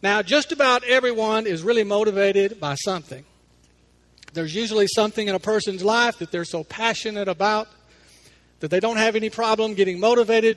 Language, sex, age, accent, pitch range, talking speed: English, male, 50-69, American, 160-220 Hz, 180 wpm